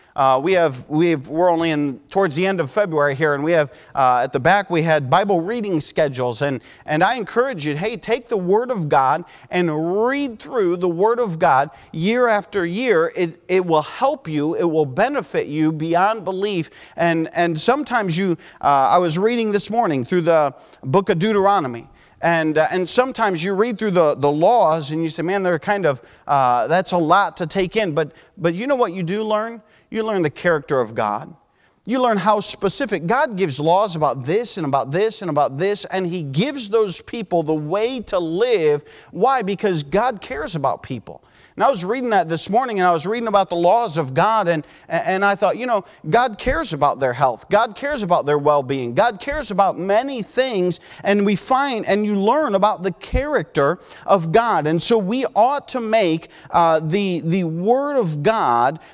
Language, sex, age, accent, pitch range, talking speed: English, male, 40-59, American, 160-220 Hz, 205 wpm